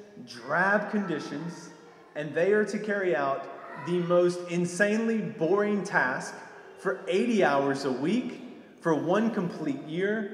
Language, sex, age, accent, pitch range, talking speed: English, male, 30-49, American, 135-205 Hz, 130 wpm